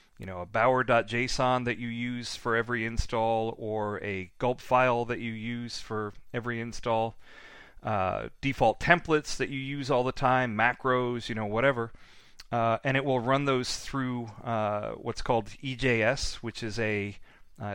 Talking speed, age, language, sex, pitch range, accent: 160 wpm, 40-59, English, male, 110-130 Hz, American